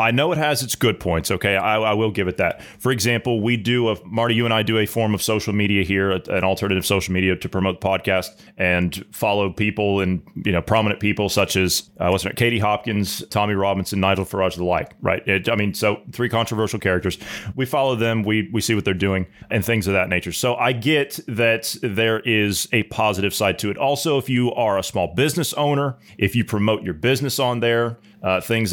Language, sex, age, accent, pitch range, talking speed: English, male, 30-49, American, 100-115 Hz, 230 wpm